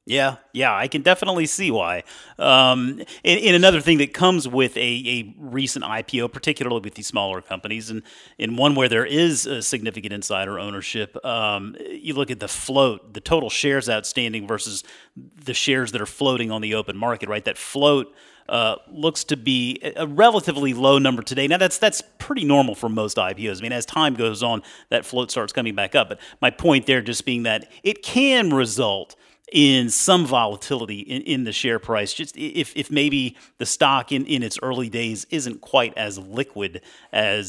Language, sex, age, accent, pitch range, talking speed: English, male, 40-59, American, 115-155 Hz, 190 wpm